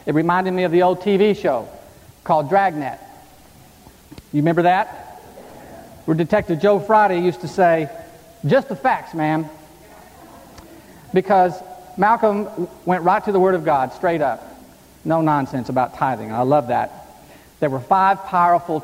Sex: male